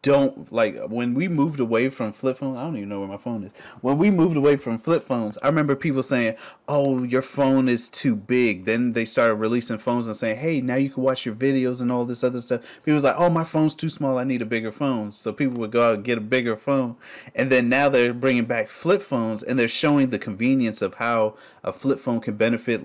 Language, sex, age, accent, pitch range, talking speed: English, male, 30-49, American, 105-135 Hz, 250 wpm